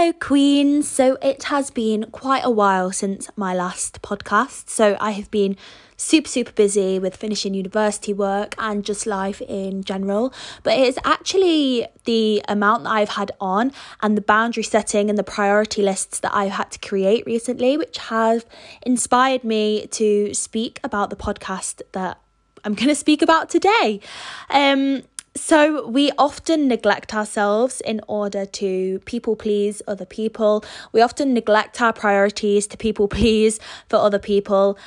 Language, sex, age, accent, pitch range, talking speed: English, female, 20-39, British, 200-255 Hz, 160 wpm